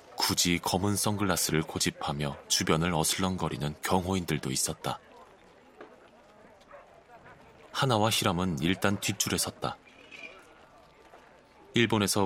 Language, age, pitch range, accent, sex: Korean, 30-49, 80-105 Hz, native, male